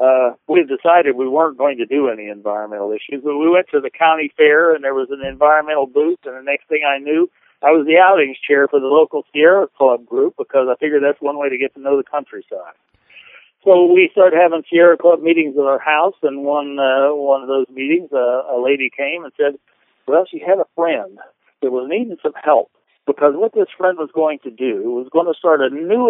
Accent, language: American, English